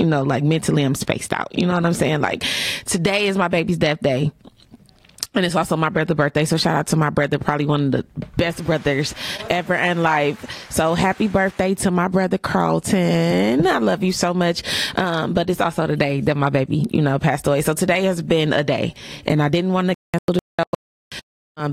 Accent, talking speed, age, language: American, 220 wpm, 20-39, English